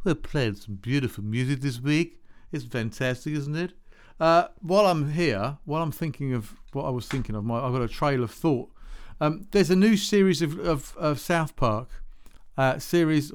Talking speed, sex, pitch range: 195 wpm, male, 120-175 Hz